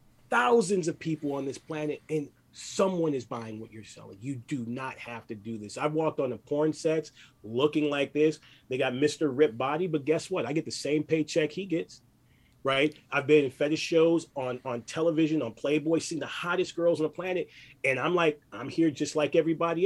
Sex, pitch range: male, 120-160 Hz